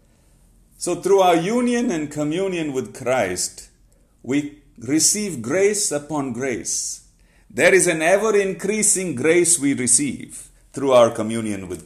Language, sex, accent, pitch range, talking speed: English, male, Indian, 110-175 Hz, 120 wpm